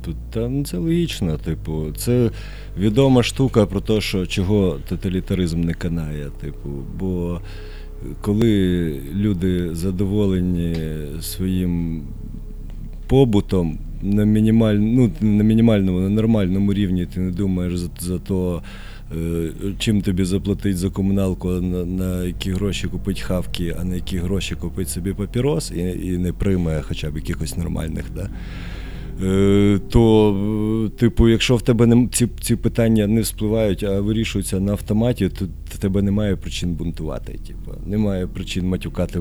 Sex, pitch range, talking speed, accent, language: male, 85-105 Hz, 130 wpm, native, Ukrainian